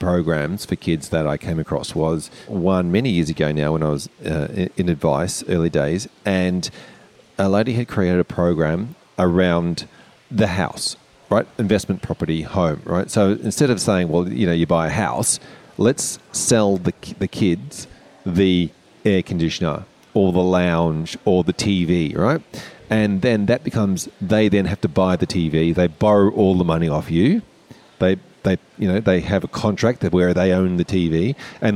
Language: English